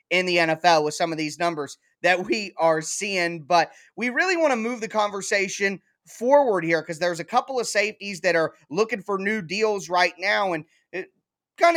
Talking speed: 195 wpm